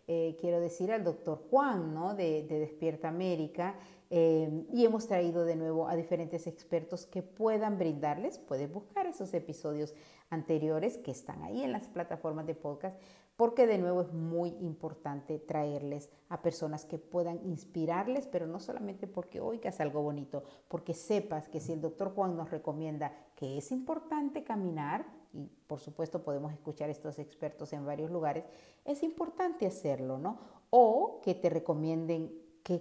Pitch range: 150-180 Hz